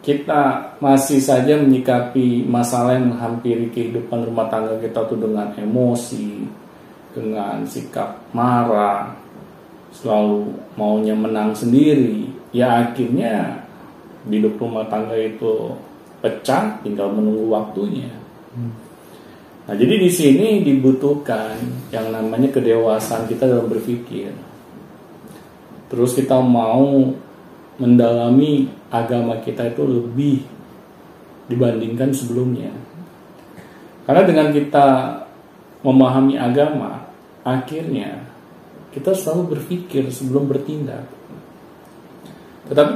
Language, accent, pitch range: Indonesian, native, 110-135 Hz